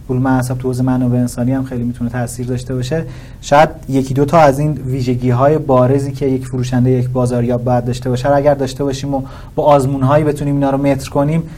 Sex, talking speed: male, 225 wpm